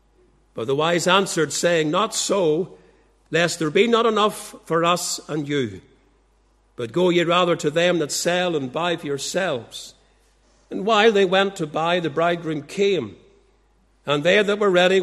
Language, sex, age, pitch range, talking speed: English, male, 60-79, 150-185 Hz, 170 wpm